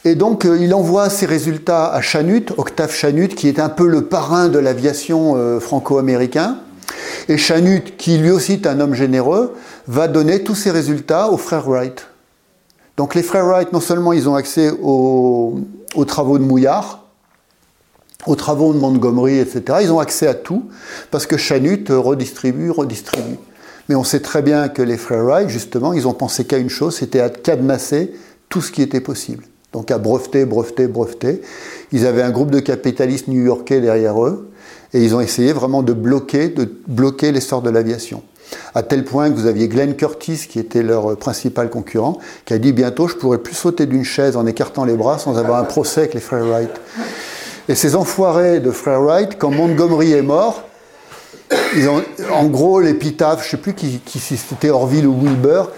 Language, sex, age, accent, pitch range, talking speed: French, male, 50-69, French, 125-160 Hz, 190 wpm